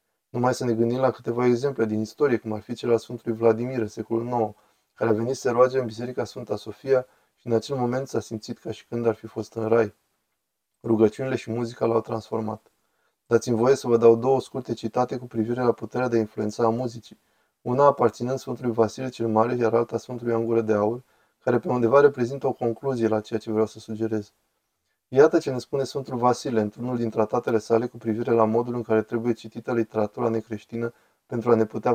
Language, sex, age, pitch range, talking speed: Romanian, male, 20-39, 110-125 Hz, 205 wpm